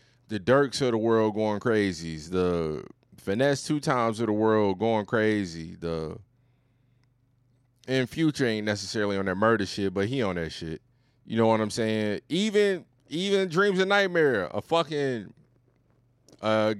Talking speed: 155 wpm